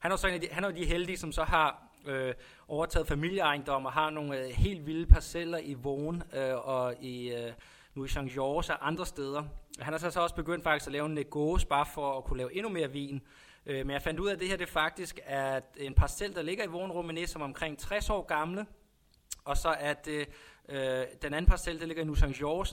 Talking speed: 240 wpm